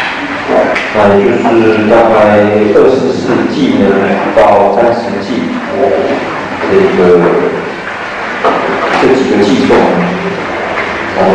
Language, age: Chinese, 40-59